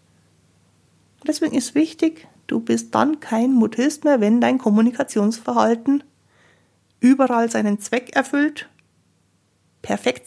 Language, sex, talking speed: German, female, 100 wpm